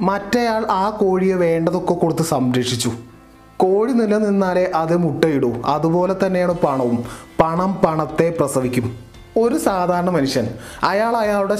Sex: male